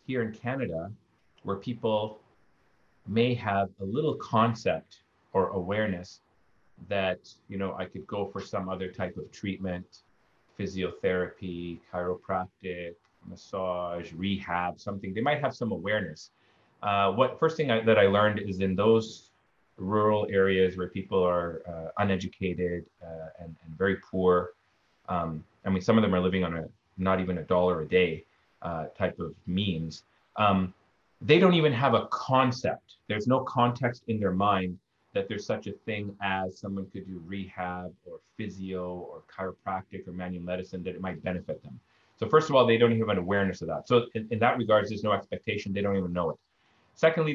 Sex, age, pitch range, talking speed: male, 30-49, 90-110 Hz, 175 wpm